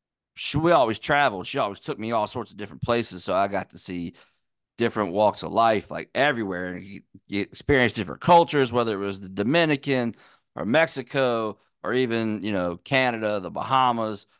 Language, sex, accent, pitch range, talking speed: English, male, American, 100-125 Hz, 185 wpm